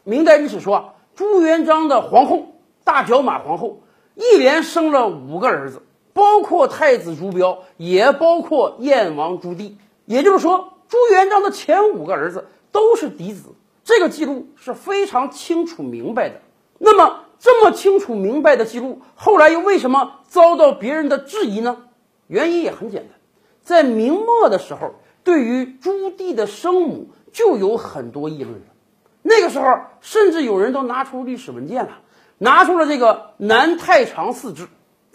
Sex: male